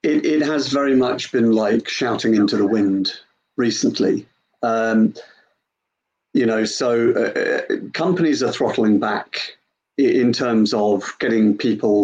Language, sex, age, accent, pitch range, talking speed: English, male, 40-59, British, 105-135 Hz, 130 wpm